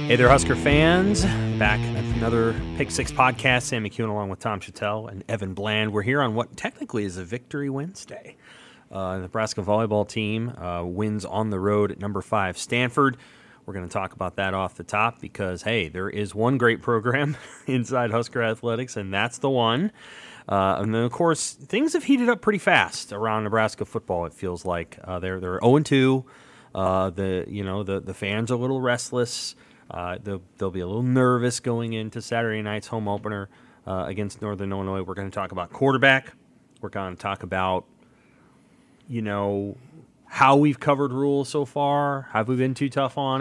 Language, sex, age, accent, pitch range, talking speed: English, male, 30-49, American, 105-130 Hz, 190 wpm